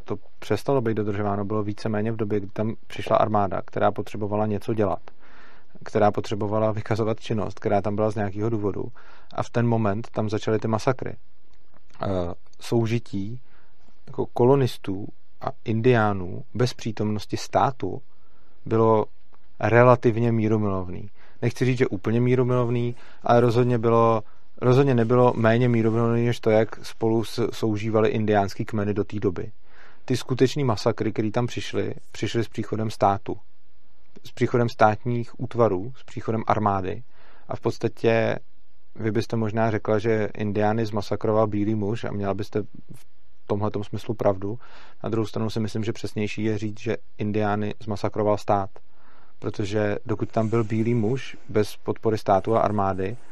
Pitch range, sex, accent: 105-115 Hz, male, native